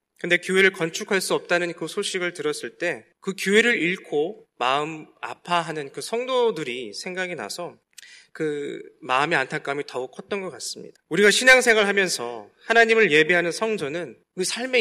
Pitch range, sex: 175-225 Hz, male